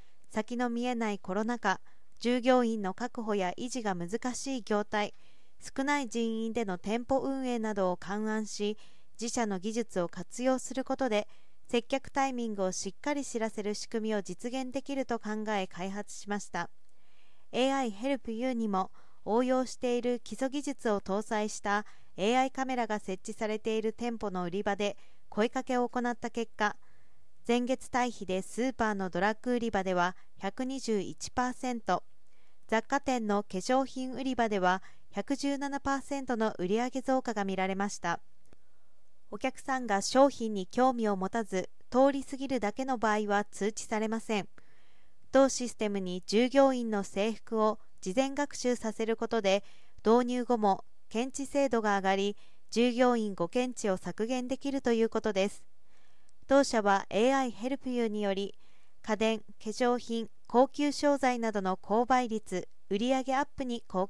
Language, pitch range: Japanese, 205-255 Hz